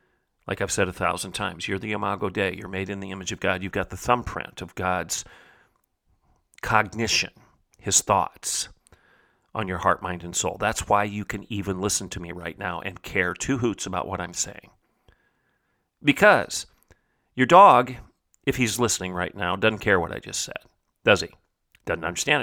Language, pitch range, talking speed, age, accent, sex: English, 90-110 Hz, 180 wpm, 40-59, American, male